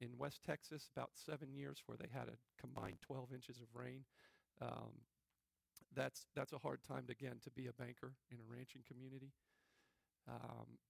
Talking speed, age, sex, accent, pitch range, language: 175 wpm, 40-59, male, American, 125-140 Hz, English